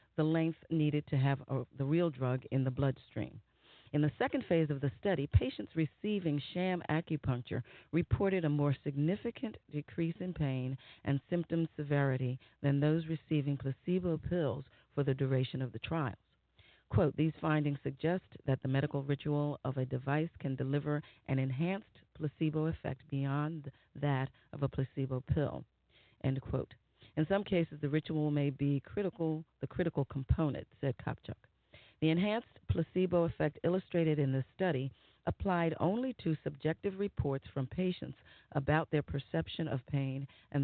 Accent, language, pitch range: American, English, 135-160 Hz